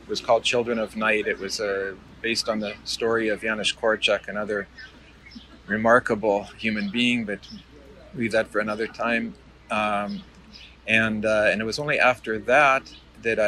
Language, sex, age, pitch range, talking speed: English, male, 40-59, 100-115 Hz, 160 wpm